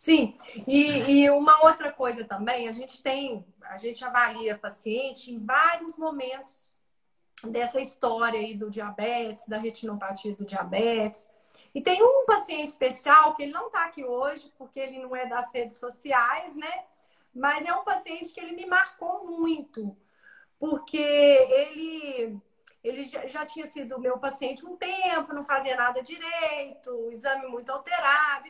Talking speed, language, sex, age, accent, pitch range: 150 wpm, Portuguese, female, 30-49, Brazilian, 235-305 Hz